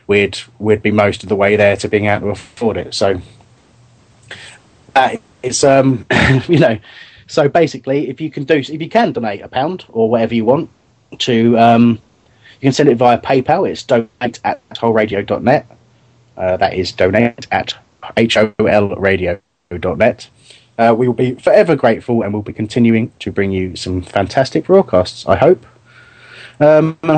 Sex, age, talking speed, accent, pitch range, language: male, 30-49, 180 wpm, British, 105-135 Hz, English